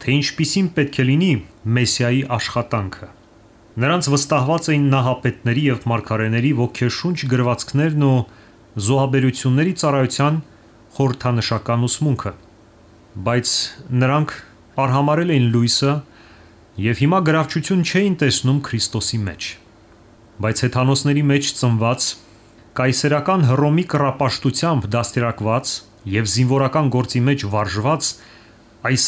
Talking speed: 70 wpm